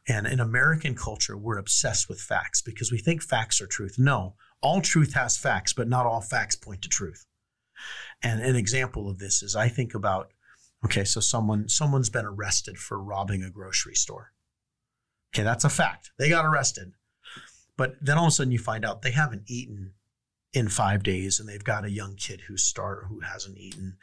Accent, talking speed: American, 200 wpm